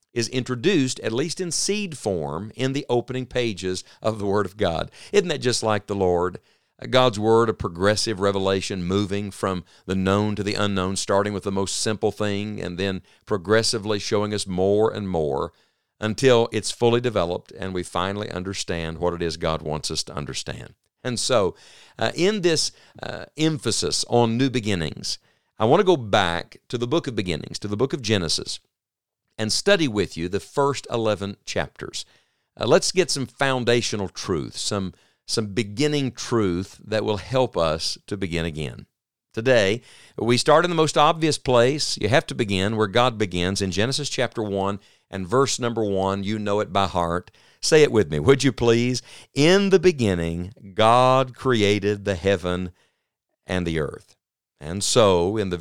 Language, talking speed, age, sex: English, 175 wpm, 50-69, male